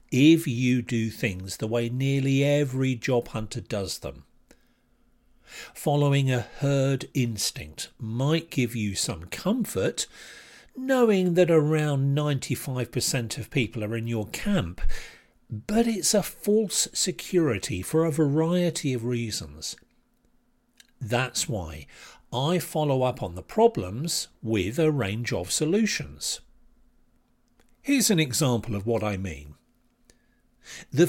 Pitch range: 115-165 Hz